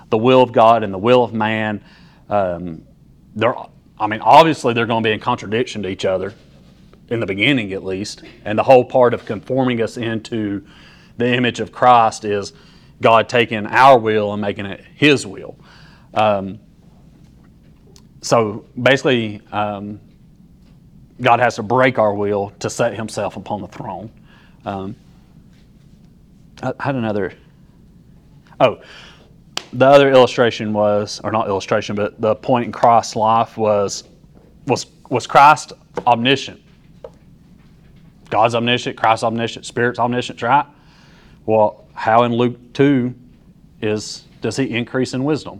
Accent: American